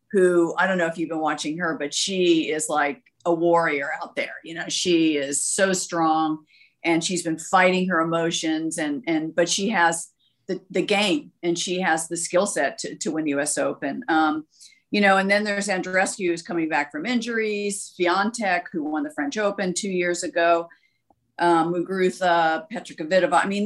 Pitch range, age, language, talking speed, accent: 160-200 Hz, 50-69, English, 195 wpm, American